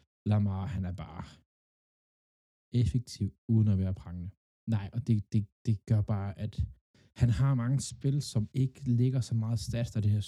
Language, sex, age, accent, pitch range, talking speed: Danish, male, 20-39, native, 100-115 Hz, 175 wpm